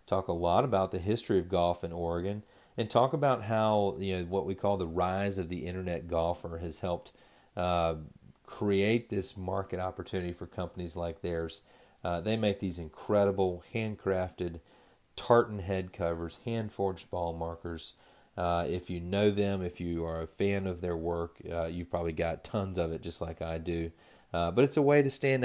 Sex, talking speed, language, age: male, 190 wpm, English, 40-59